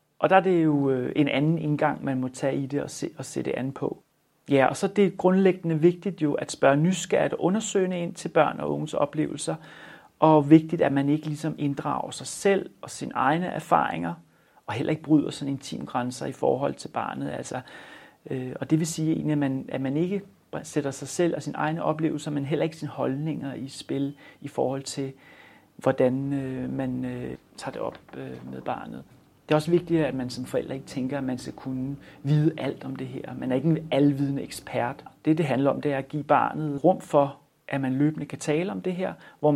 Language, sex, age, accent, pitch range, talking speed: Danish, male, 30-49, native, 135-155 Hz, 220 wpm